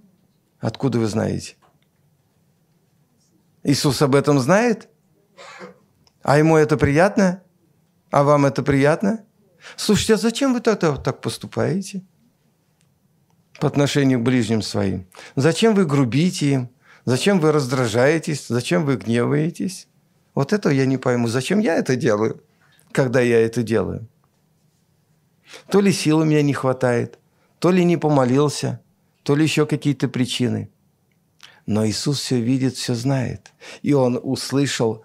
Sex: male